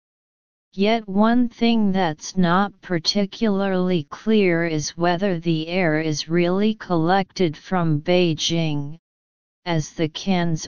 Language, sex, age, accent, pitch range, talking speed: English, female, 40-59, American, 160-195 Hz, 105 wpm